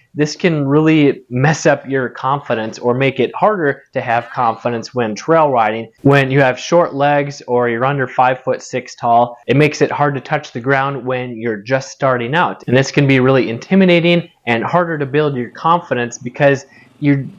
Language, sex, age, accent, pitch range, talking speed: English, male, 20-39, American, 130-160 Hz, 195 wpm